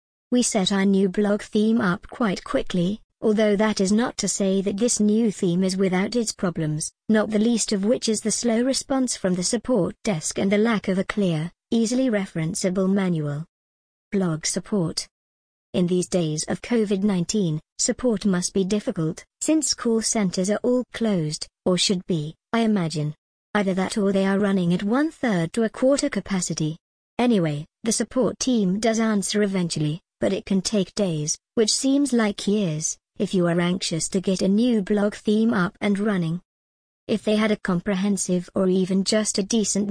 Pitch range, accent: 185-220 Hz, British